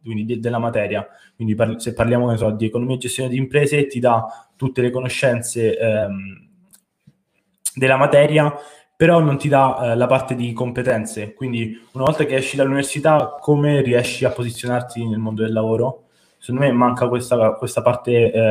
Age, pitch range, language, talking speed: 20-39, 115-145 Hz, Italian, 170 wpm